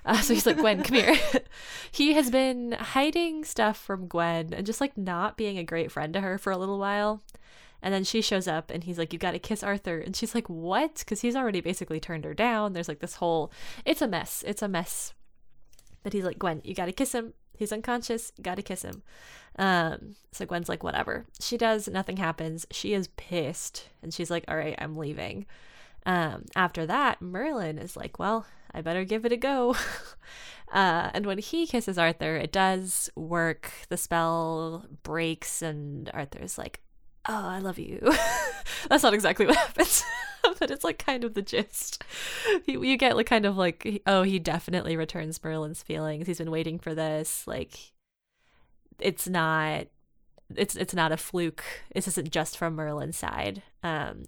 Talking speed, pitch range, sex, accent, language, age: 190 wpm, 165-220 Hz, female, American, English, 10-29